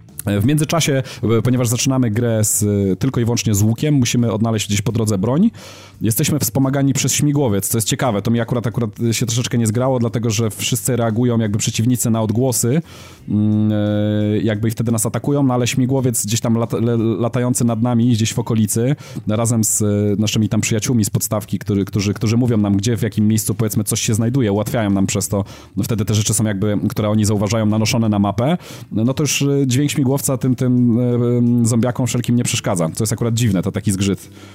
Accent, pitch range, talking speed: native, 110-125 Hz, 190 wpm